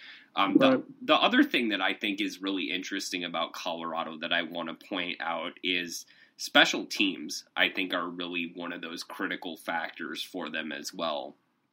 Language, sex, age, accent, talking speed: English, male, 20-39, American, 180 wpm